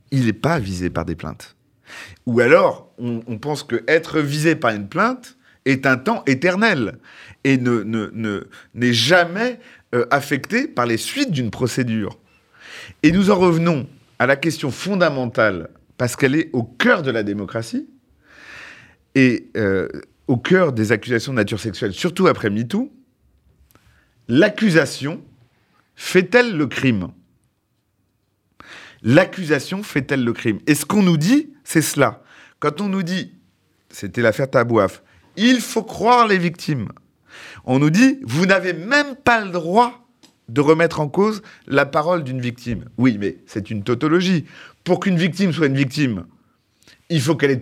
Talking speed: 145 wpm